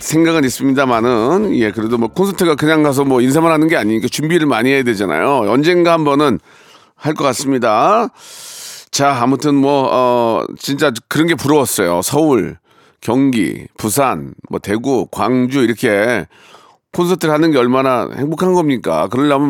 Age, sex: 40-59, male